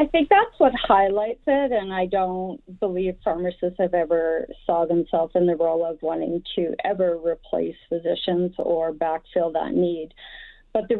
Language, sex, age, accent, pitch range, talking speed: English, female, 40-59, American, 165-195 Hz, 165 wpm